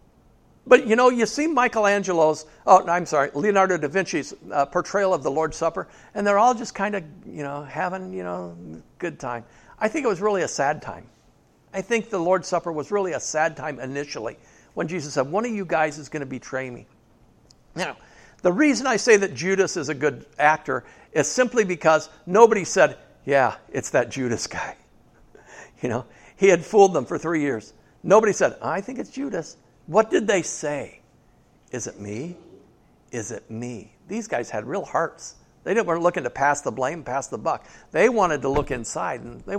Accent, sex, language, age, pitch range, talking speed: American, male, English, 60-79, 140-200 Hz, 200 wpm